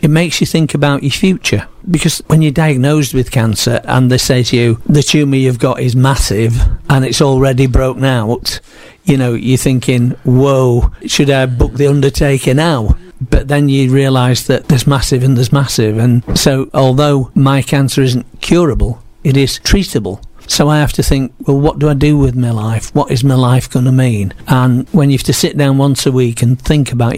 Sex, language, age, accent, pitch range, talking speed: male, English, 50-69, British, 120-140 Hz, 205 wpm